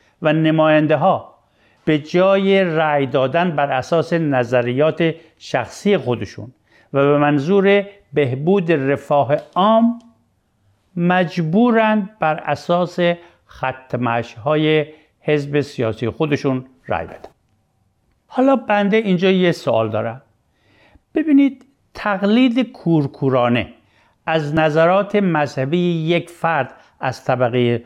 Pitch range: 130-175 Hz